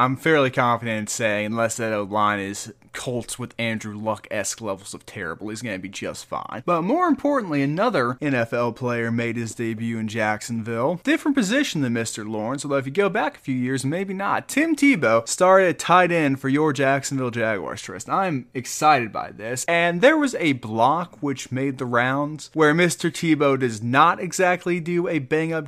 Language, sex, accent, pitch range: English, male, American, 115-165 Hz